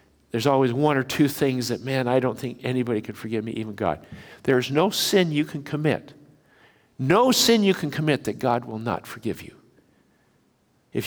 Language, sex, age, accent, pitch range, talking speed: English, male, 60-79, American, 120-170 Hz, 190 wpm